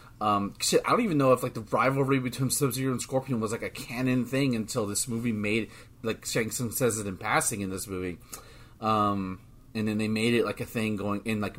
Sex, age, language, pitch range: male, 30-49, English, 115-155 Hz